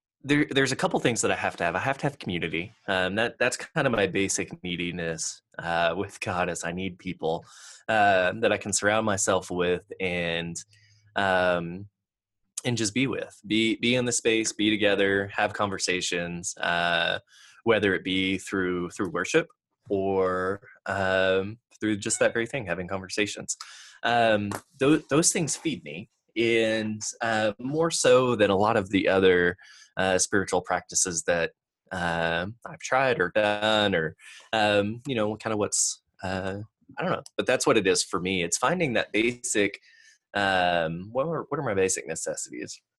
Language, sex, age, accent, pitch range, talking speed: English, male, 20-39, American, 90-110 Hz, 175 wpm